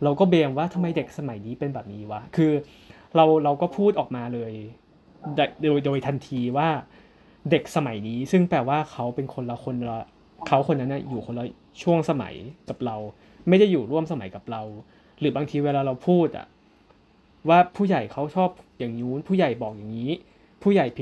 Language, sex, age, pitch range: Thai, male, 20-39, 120-165 Hz